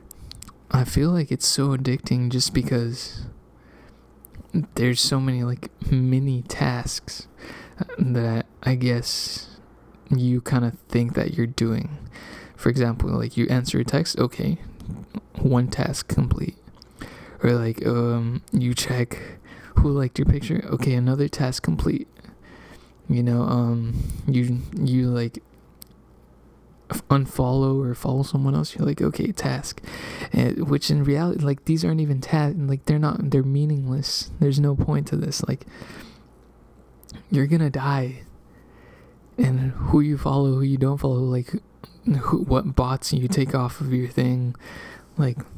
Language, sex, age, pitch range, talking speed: English, male, 20-39, 120-140 Hz, 140 wpm